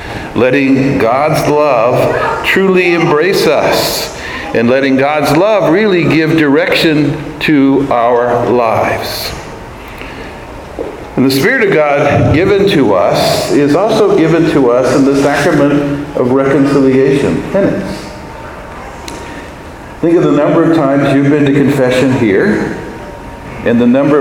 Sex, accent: male, American